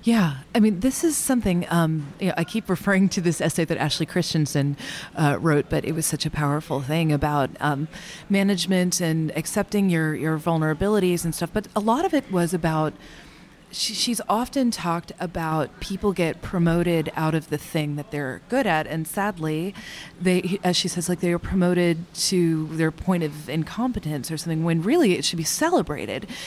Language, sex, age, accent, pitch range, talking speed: English, female, 30-49, American, 160-190 Hz, 190 wpm